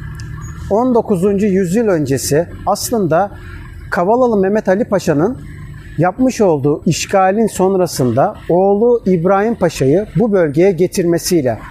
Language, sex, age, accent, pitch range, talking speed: Turkish, male, 60-79, native, 180-225 Hz, 90 wpm